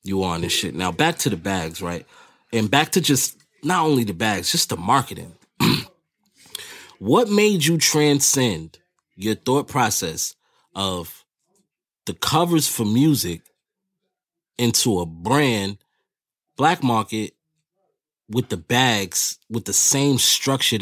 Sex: male